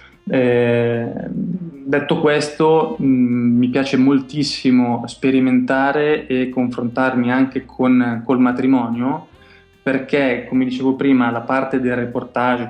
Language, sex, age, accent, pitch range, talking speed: Italian, male, 20-39, native, 120-140 Hz, 100 wpm